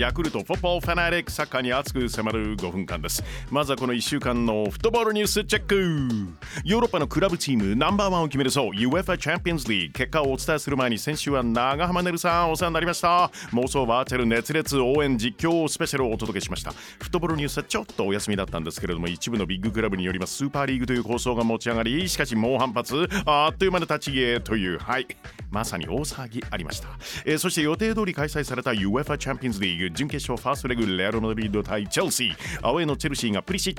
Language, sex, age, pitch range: Japanese, male, 40-59, 115-160 Hz